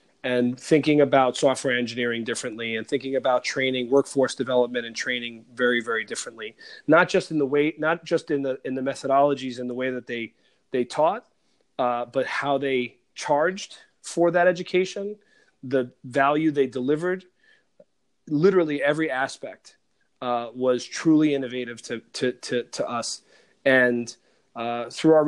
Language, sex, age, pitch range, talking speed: English, male, 30-49, 125-145 Hz, 150 wpm